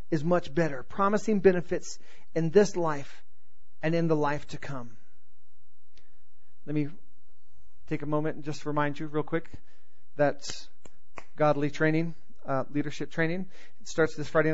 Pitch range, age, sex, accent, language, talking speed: 150-205 Hz, 40-59, male, American, English, 145 wpm